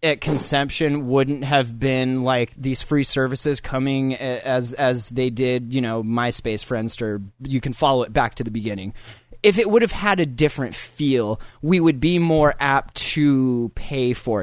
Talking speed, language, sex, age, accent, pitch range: 175 wpm, English, male, 20-39, American, 120-145 Hz